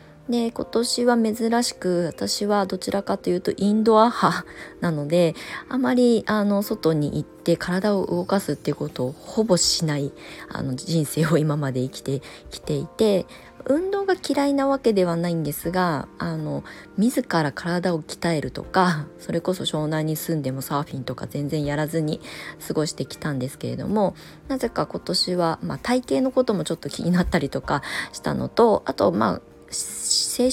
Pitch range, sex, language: 150-205 Hz, female, Japanese